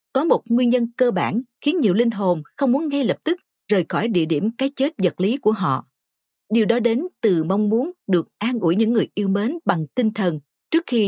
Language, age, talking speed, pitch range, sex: Vietnamese, 50-69, 235 wpm, 185-250 Hz, female